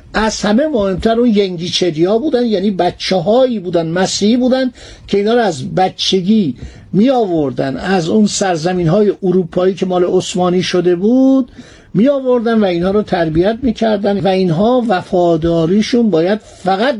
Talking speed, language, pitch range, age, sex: 125 wpm, Persian, 180-235 Hz, 50-69, male